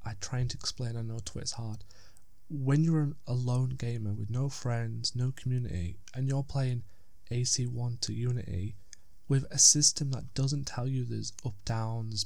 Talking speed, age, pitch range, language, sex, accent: 160 wpm, 20-39, 110-135 Hz, English, male, British